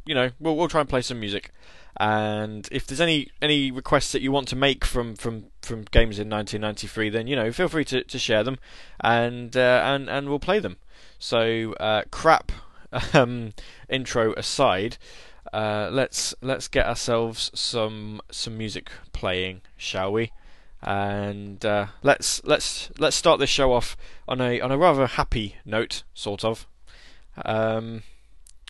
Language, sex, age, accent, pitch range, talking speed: English, male, 20-39, British, 105-135 Hz, 165 wpm